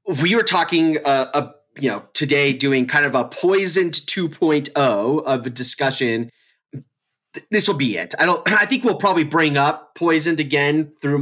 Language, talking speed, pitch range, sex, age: English, 170 wpm, 125-165 Hz, male, 30-49